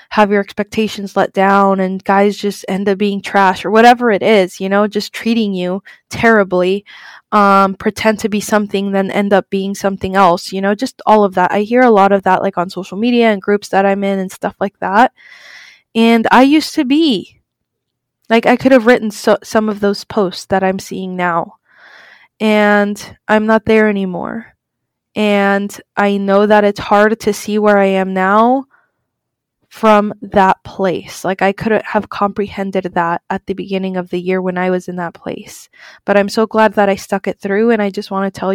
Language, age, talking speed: English, 20-39, 200 wpm